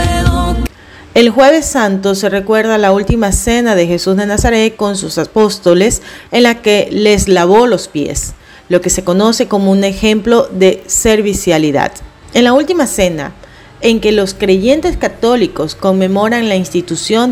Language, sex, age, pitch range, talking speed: Spanish, female, 40-59, 180-225 Hz, 150 wpm